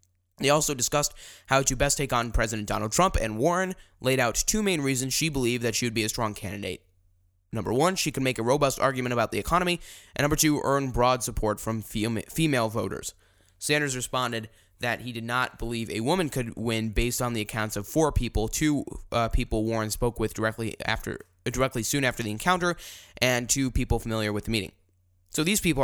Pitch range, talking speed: 105-145 Hz, 205 wpm